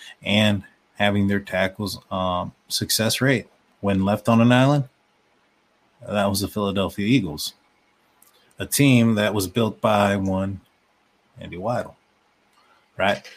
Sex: male